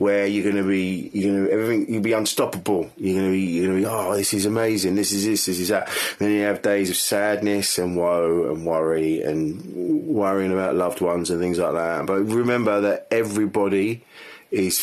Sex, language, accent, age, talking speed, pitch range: male, English, British, 30-49, 225 wpm, 90-105 Hz